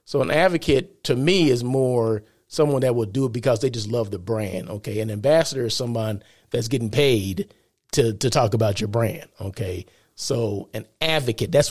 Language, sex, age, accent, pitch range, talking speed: English, male, 40-59, American, 125-155 Hz, 185 wpm